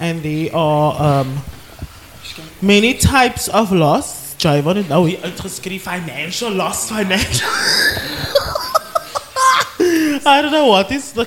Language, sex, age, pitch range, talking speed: English, male, 20-39, 145-220 Hz, 85 wpm